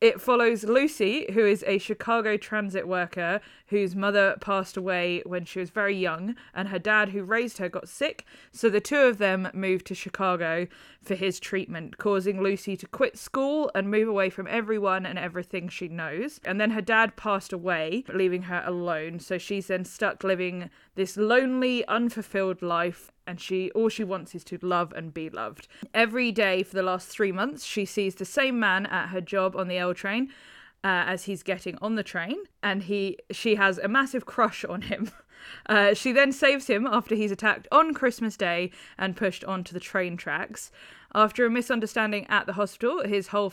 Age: 20-39